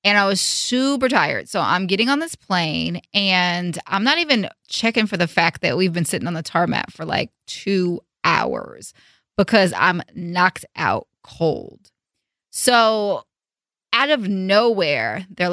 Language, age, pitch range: English, 20-39, 175-220 Hz